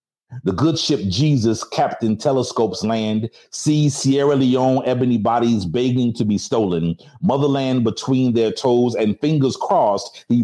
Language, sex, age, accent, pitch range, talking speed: English, male, 40-59, American, 110-135 Hz, 140 wpm